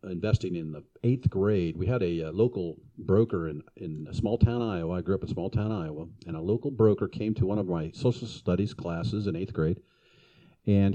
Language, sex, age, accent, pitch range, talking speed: English, male, 50-69, American, 85-110 Hz, 220 wpm